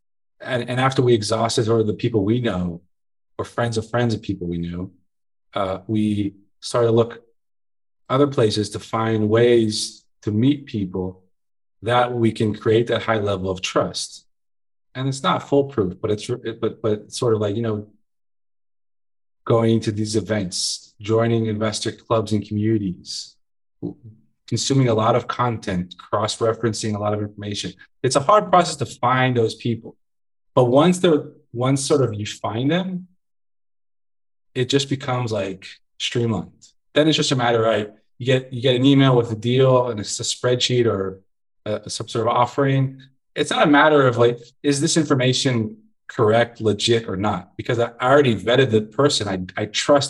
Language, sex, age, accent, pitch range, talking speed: English, male, 30-49, American, 105-125 Hz, 170 wpm